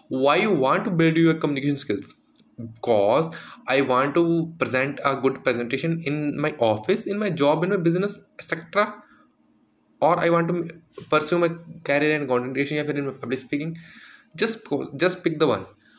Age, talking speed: 20-39, 160 wpm